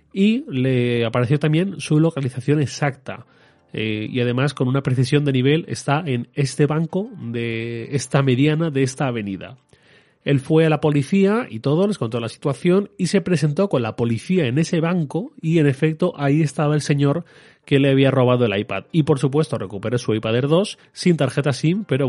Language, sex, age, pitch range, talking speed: Spanish, male, 30-49, 125-155 Hz, 190 wpm